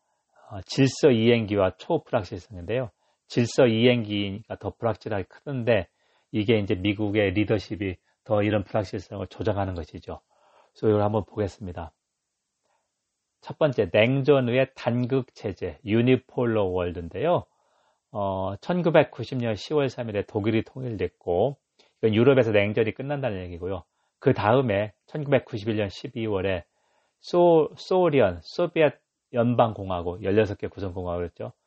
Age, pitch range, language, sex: 40-59, 95-125 Hz, Korean, male